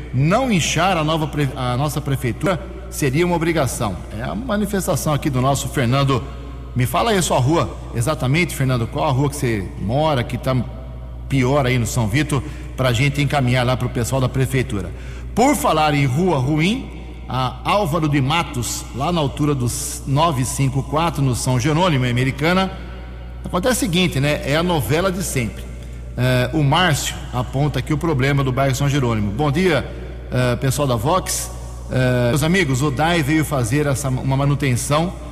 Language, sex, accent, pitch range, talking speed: Portuguese, male, Brazilian, 120-155 Hz, 170 wpm